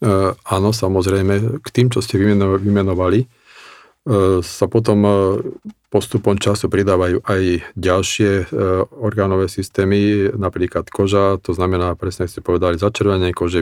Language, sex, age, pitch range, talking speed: Slovak, male, 40-59, 95-105 Hz, 110 wpm